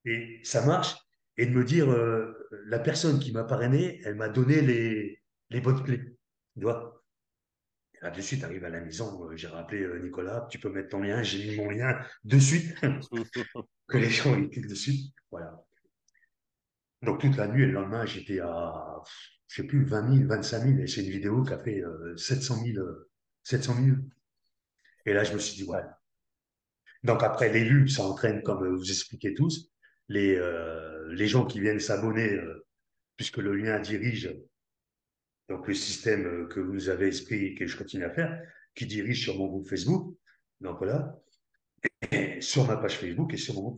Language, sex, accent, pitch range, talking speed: French, male, French, 95-135 Hz, 190 wpm